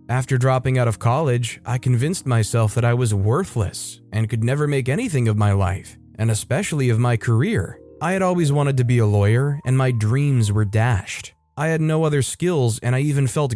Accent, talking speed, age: American, 210 wpm, 30-49